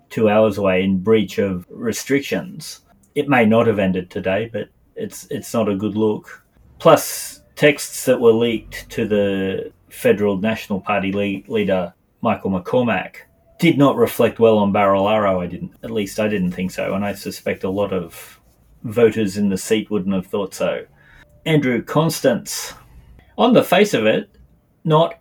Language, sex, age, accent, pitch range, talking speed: English, male, 30-49, Australian, 100-130 Hz, 165 wpm